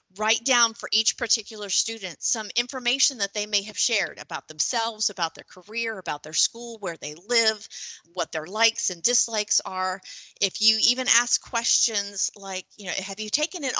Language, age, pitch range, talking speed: English, 30-49, 195-235 Hz, 185 wpm